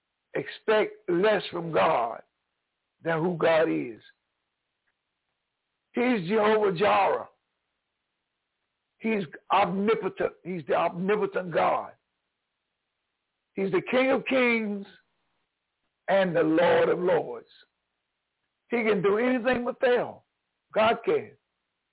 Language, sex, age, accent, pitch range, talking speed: English, male, 60-79, American, 170-240 Hz, 95 wpm